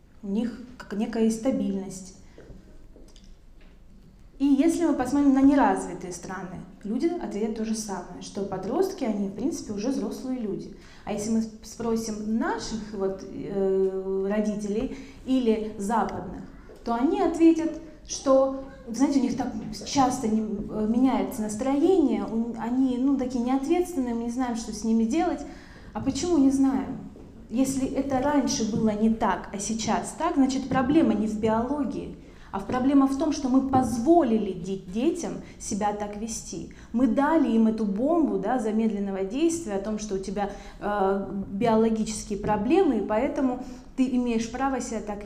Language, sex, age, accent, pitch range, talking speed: Russian, female, 20-39, native, 210-270 Hz, 145 wpm